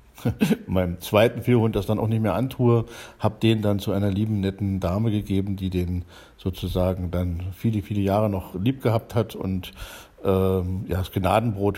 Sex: male